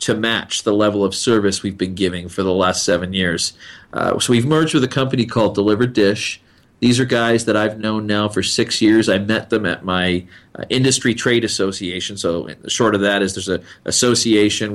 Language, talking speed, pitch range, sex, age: English, 205 wpm, 100-115 Hz, male, 40-59